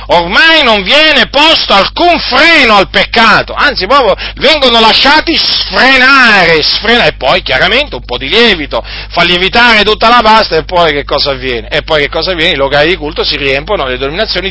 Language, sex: Italian, male